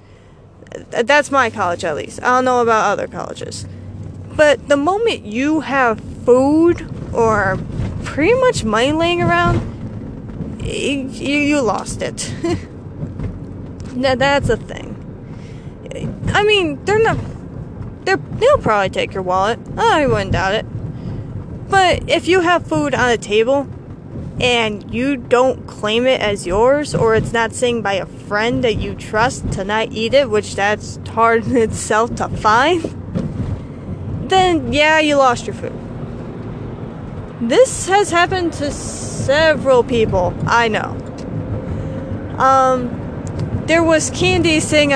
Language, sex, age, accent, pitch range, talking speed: English, female, 20-39, American, 225-300 Hz, 135 wpm